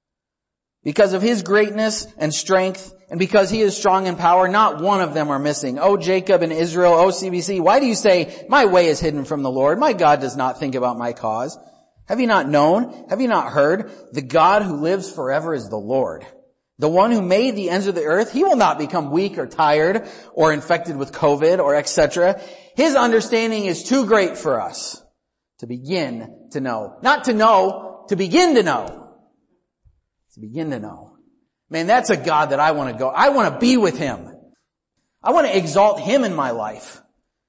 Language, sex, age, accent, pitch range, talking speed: English, male, 40-59, American, 155-215 Hz, 205 wpm